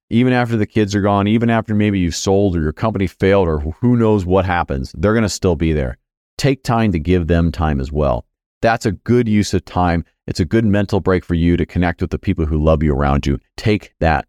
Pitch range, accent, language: 85-110 Hz, American, English